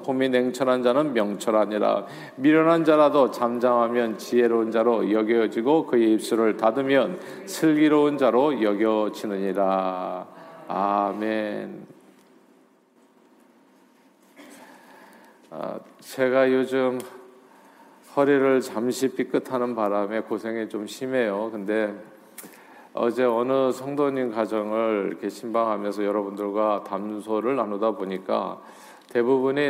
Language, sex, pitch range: Korean, male, 105-130 Hz